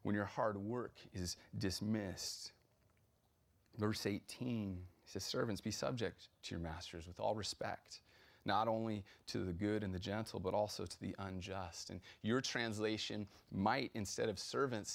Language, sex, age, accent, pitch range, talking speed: English, male, 30-49, American, 95-110 Hz, 155 wpm